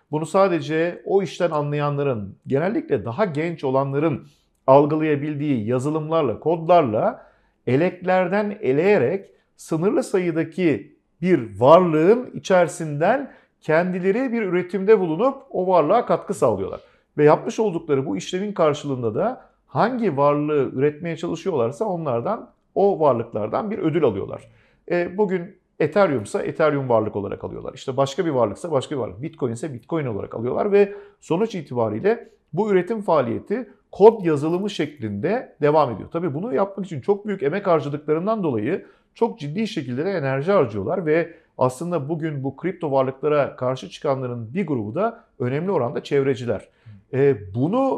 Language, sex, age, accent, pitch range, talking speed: Turkish, male, 50-69, native, 140-195 Hz, 130 wpm